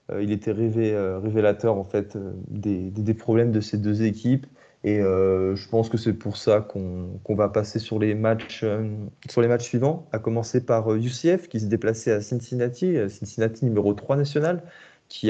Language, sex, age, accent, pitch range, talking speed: French, male, 20-39, French, 105-125 Hz, 185 wpm